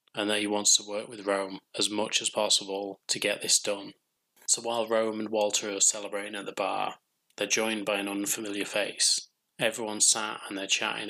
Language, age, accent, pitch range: English, 20-39, British, 100-105 Hz